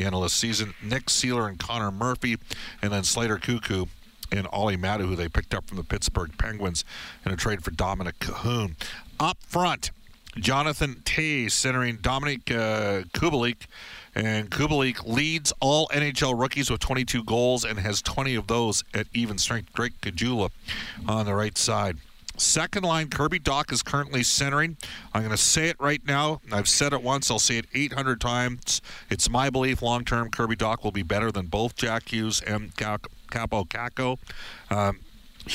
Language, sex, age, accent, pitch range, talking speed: English, male, 50-69, American, 100-130 Hz, 165 wpm